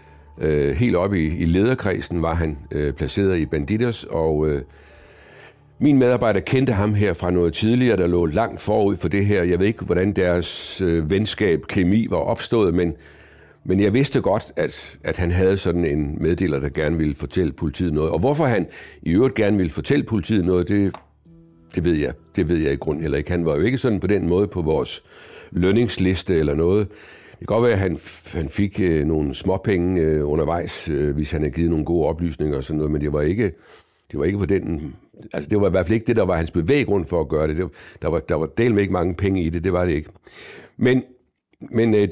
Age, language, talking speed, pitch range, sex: 60-79, Danish, 225 wpm, 80-105 Hz, male